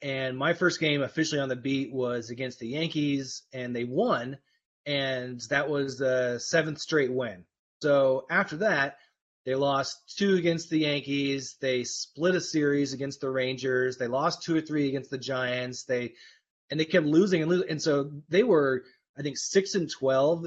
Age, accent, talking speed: 30-49, American, 180 wpm